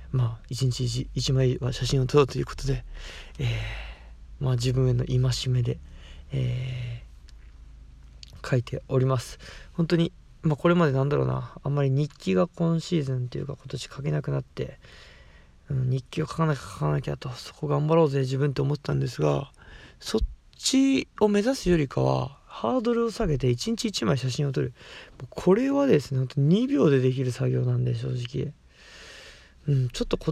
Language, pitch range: Japanese, 125-185 Hz